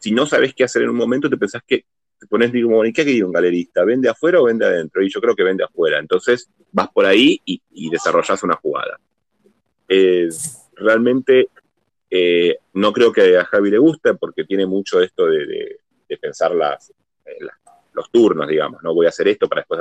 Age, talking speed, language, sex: 30-49, 215 wpm, Spanish, male